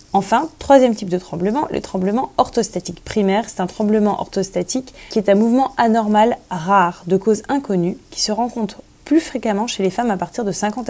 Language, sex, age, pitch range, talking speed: French, female, 20-39, 185-235 Hz, 185 wpm